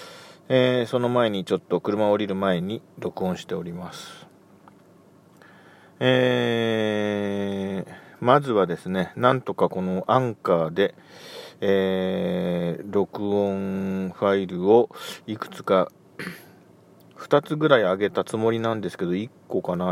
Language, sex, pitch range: Japanese, male, 95-120 Hz